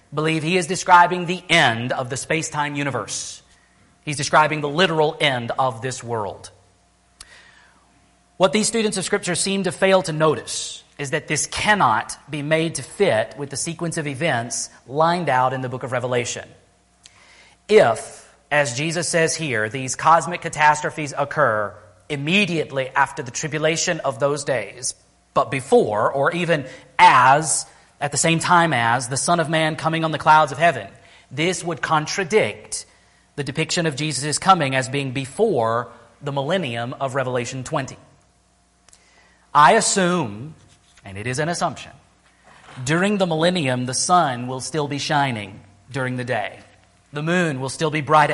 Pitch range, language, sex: 125-165 Hz, English, male